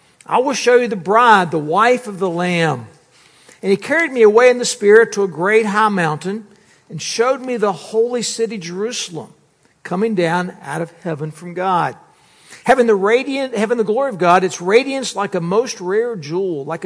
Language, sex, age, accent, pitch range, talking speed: English, male, 60-79, American, 165-215 Hz, 190 wpm